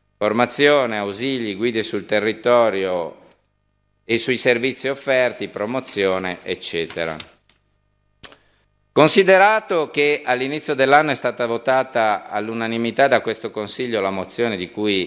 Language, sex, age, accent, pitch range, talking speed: Italian, male, 50-69, native, 110-145 Hz, 105 wpm